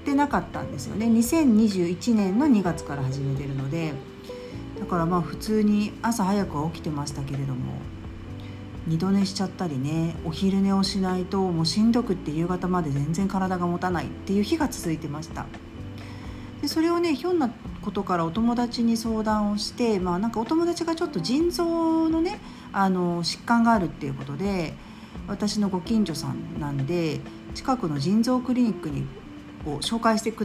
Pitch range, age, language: 160-230 Hz, 40-59, Japanese